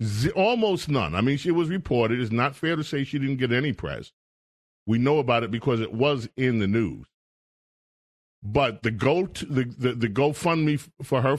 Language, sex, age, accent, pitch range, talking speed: English, male, 40-59, American, 125-170 Hz, 195 wpm